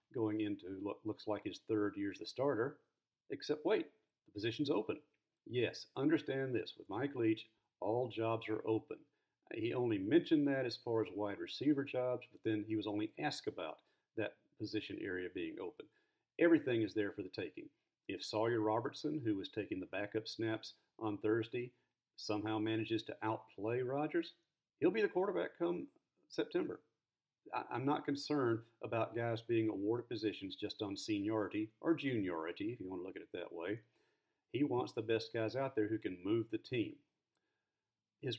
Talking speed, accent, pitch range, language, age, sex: 175 wpm, American, 110-150 Hz, English, 50-69, male